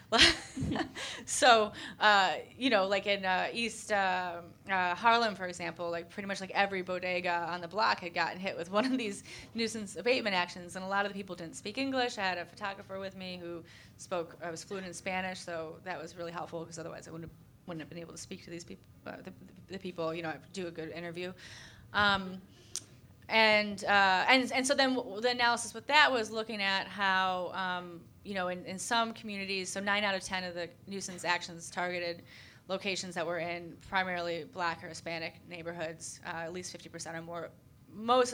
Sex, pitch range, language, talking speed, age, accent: female, 170-200 Hz, English, 210 wpm, 20-39, American